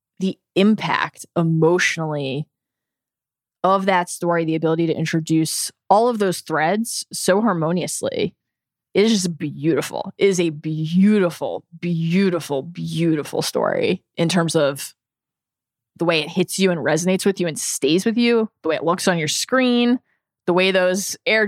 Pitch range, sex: 165-235 Hz, female